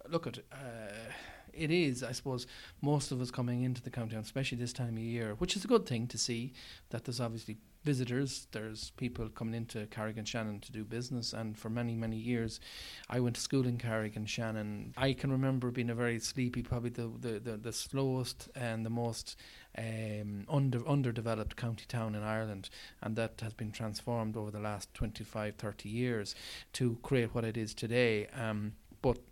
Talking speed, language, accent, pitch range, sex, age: 190 wpm, English, Irish, 110-125 Hz, male, 30-49